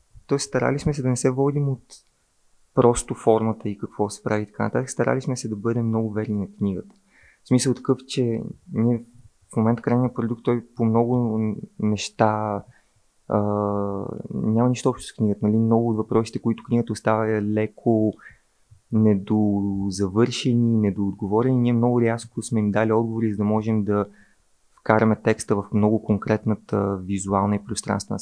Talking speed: 155 wpm